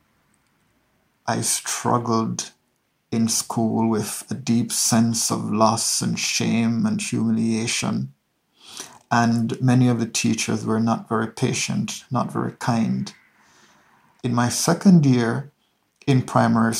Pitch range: 115-125 Hz